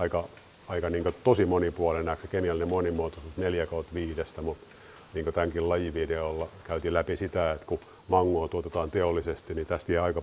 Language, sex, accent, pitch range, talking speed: Finnish, male, native, 80-85 Hz, 160 wpm